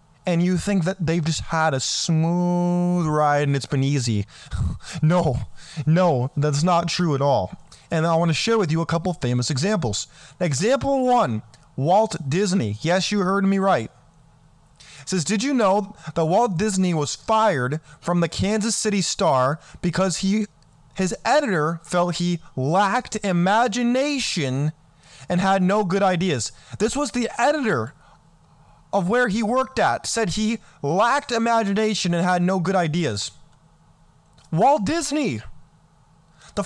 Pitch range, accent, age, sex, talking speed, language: 155-210 Hz, American, 20-39, male, 145 wpm, English